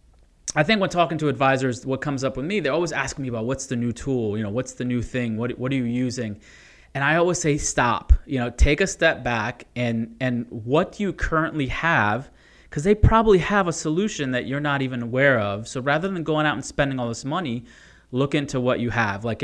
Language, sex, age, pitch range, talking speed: English, male, 30-49, 120-145 Hz, 235 wpm